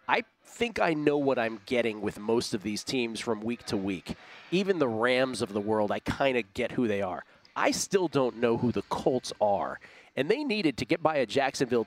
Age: 40-59